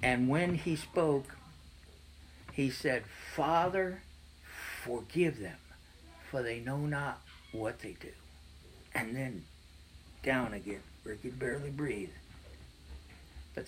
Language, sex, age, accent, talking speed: English, male, 60-79, American, 115 wpm